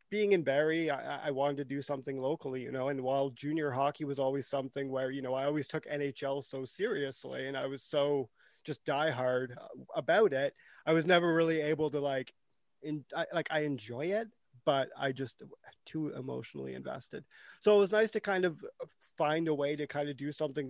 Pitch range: 135-155 Hz